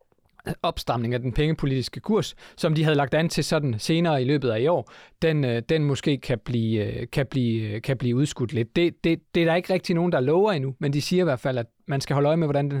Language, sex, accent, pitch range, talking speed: Danish, male, native, 125-150 Hz, 260 wpm